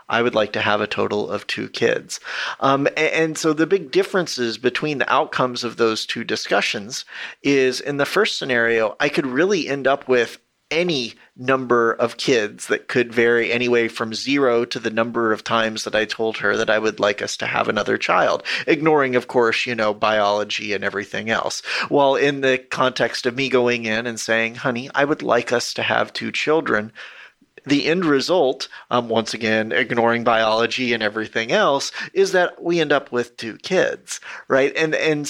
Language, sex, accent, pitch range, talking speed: English, male, American, 115-145 Hz, 190 wpm